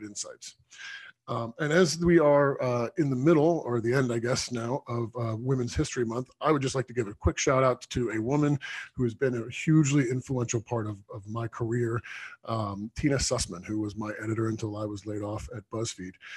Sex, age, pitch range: male, 40-59, 110-130 Hz